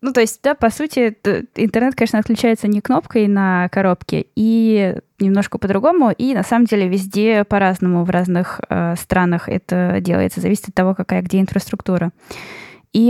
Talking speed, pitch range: 160 wpm, 185-220 Hz